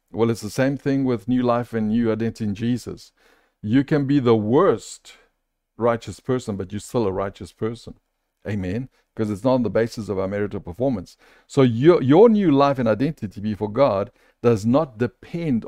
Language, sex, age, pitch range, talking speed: English, male, 50-69, 110-140 Hz, 190 wpm